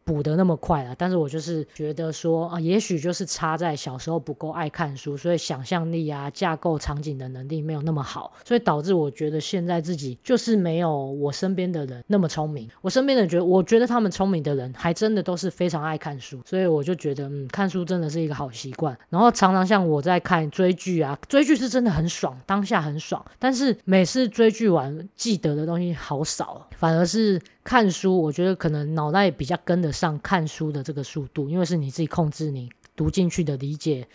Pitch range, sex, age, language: 150-180 Hz, female, 20-39, Chinese